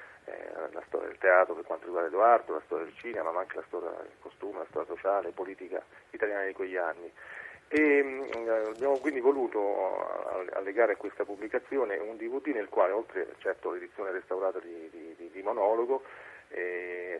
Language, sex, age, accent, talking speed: Italian, male, 40-59, native, 165 wpm